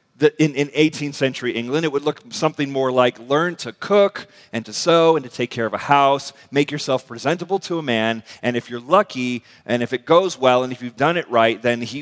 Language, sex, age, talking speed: English, male, 40-59, 240 wpm